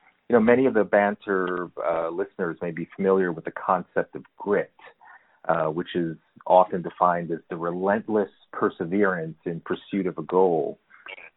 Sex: male